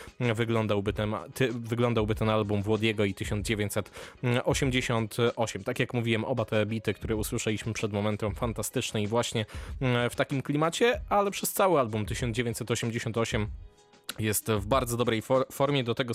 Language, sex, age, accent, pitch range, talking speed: Polish, male, 20-39, native, 110-130 Hz, 140 wpm